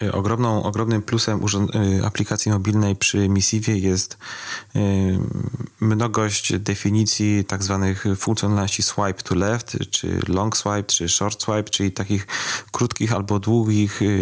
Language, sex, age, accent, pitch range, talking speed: Polish, male, 30-49, native, 95-110 Hz, 110 wpm